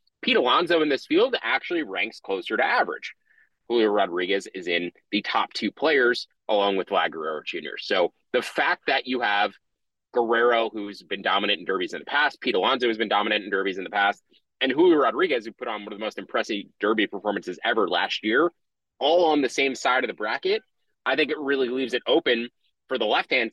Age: 30-49